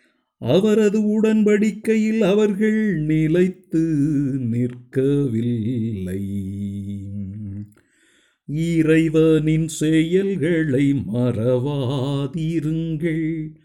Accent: native